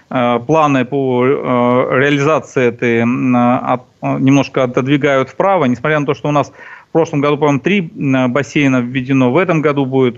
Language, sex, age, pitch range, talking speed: Russian, male, 40-59, 120-145 Hz, 140 wpm